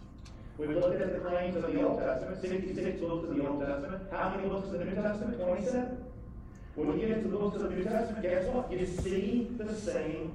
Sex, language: male, English